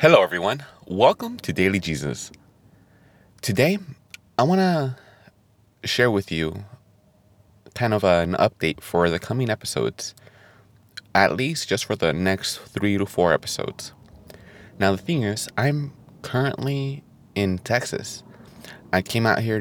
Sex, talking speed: male, 130 wpm